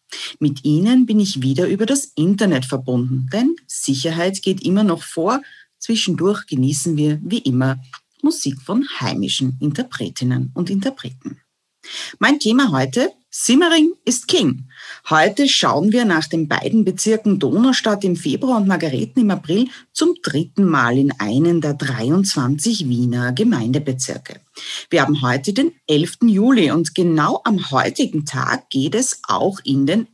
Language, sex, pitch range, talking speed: German, female, 145-230 Hz, 140 wpm